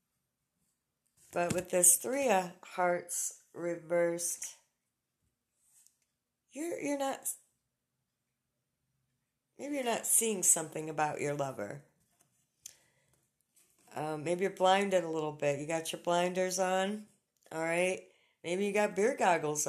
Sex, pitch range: female, 160-195 Hz